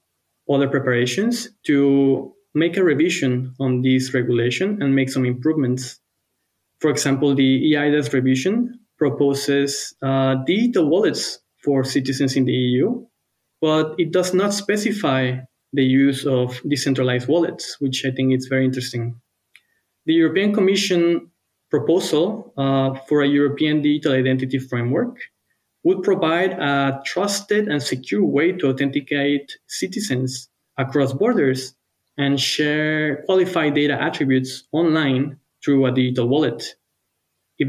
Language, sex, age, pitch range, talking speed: English, male, 20-39, 130-155 Hz, 125 wpm